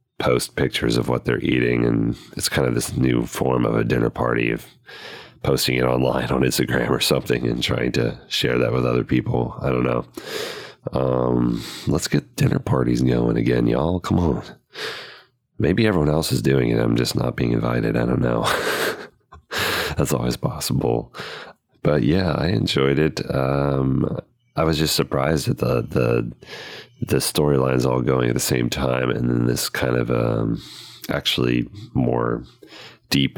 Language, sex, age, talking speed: English, male, 30-49, 165 wpm